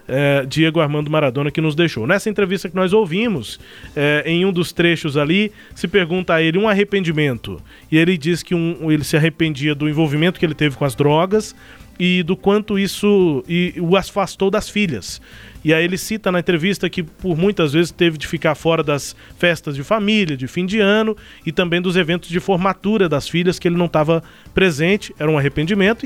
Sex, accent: male, Brazilian